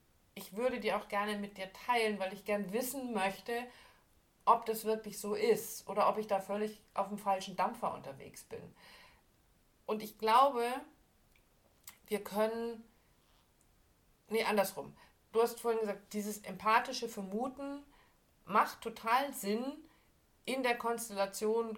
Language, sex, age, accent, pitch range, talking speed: German, female, 50-69, German, 180-225 Hz, 135 wpm